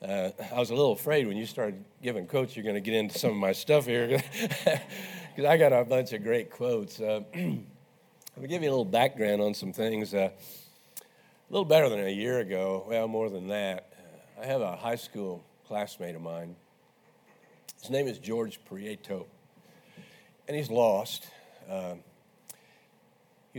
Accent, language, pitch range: American, English, 90-120 Hz